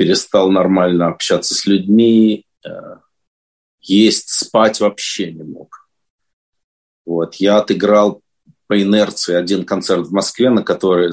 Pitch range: 95-140 Hz